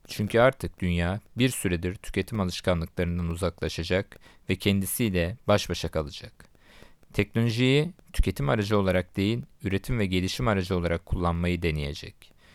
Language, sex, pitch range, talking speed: Turkish, male, 90-110 Hz, 120 wpm